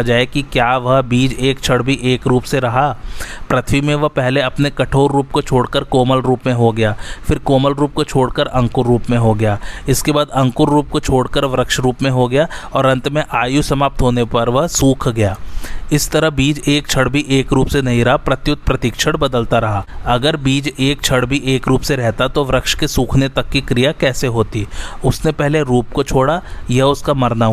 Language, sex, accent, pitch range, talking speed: Hindi, male, native, 120-145 Hz, 215 wpm